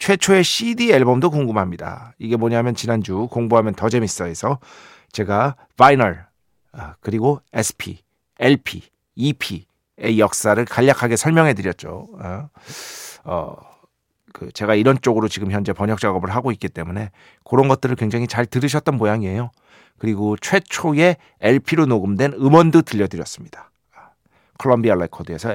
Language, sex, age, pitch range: Korean, male, 40-59, 100-140 Hz